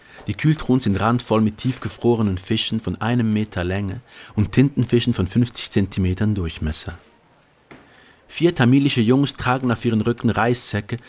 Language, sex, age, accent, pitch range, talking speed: German, male, 50-69, German, 95-120 Hz, 135 wpm